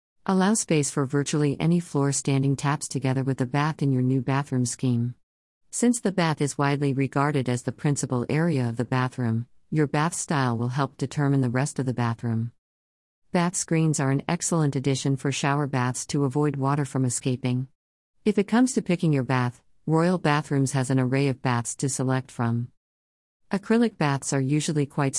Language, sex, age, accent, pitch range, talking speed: English, female, 50-69, American, 130-160 Hz, 185 wpm